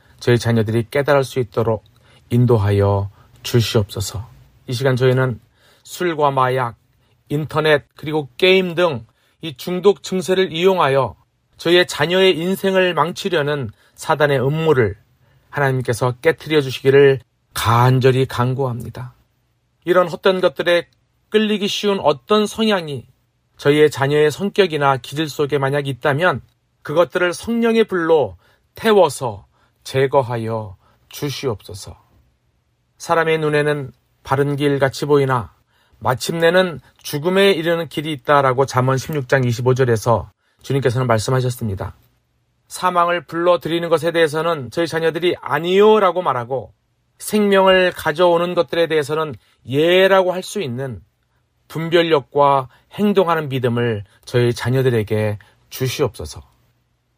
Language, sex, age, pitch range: Korean, male, 40-59, 120-170 Hz